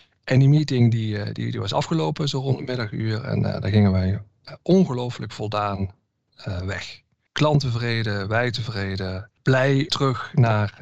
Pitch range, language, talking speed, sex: 105-125 Hz, Dutch, 150 wpm, male